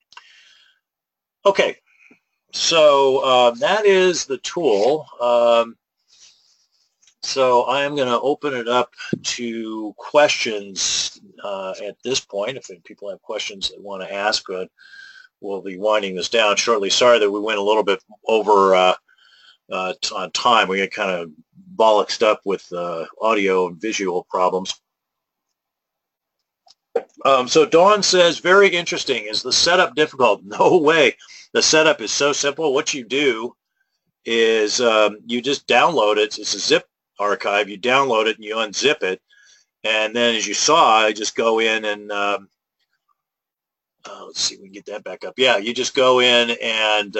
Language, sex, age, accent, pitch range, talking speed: English, male, 40-59, American, 100-140 Hz, 160 wpm